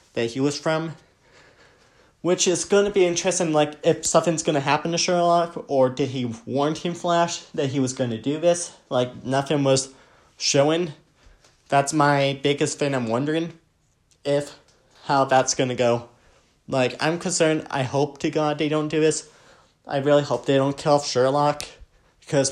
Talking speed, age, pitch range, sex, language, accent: 180 wpm, 30-49, 130-160 Hz, male, English, American